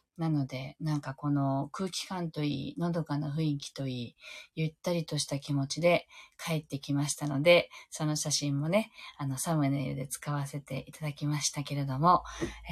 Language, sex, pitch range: Japanese, female, 145-175 Hz